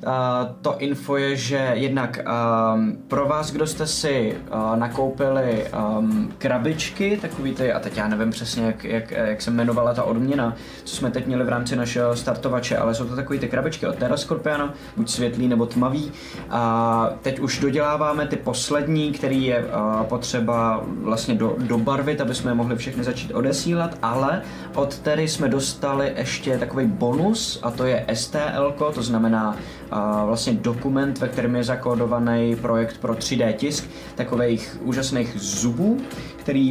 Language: Czech